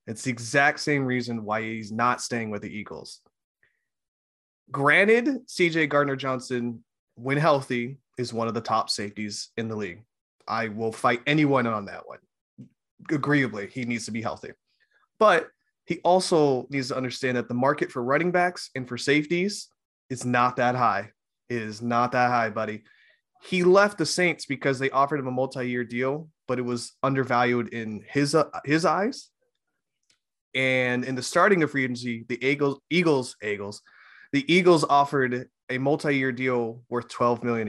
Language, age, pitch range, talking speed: English, 20-39, 120-160 Hz, 165 wpm